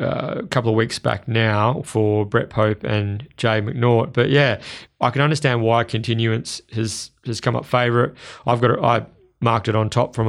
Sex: male